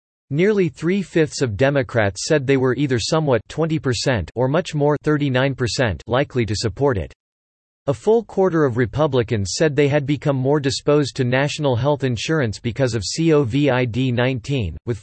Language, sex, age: English, male, 40-59